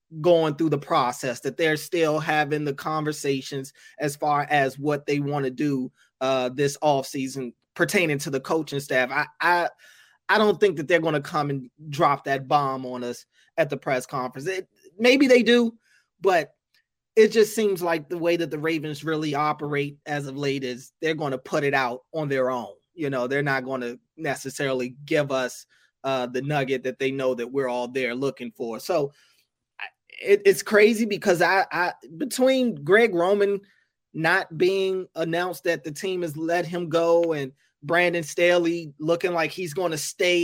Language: English